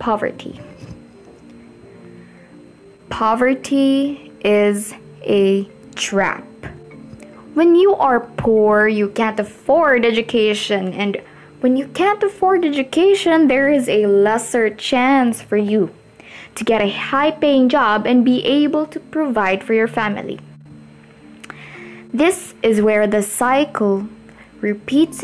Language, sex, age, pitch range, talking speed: English, female, 20-39, 205-275 Hz, 105 wpm